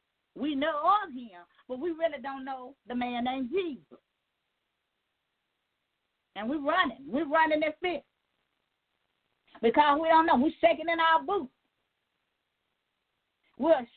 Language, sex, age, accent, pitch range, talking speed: English, female, 40-59, American, 280-355 Hz, 130 wpm